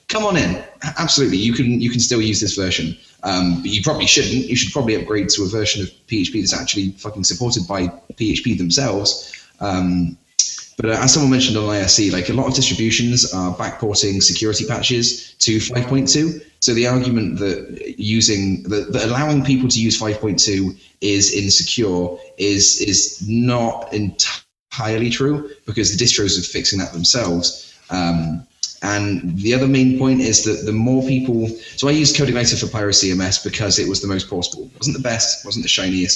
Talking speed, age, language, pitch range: 180 wpm, 10-29, English, 95-120 Hz